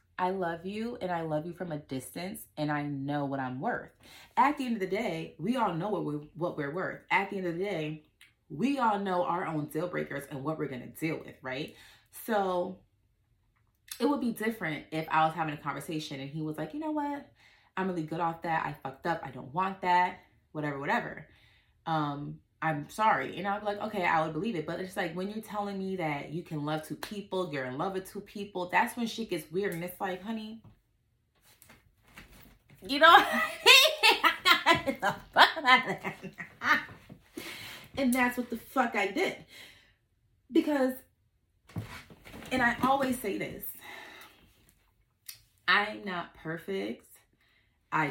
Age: 30-49